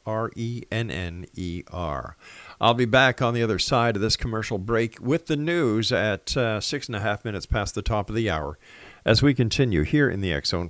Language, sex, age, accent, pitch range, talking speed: English, male, 50-69, American, 85-120 Hz, 195 wpm